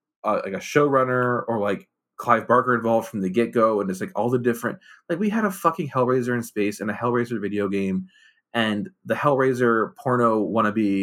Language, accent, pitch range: English, American, 110-140 Hz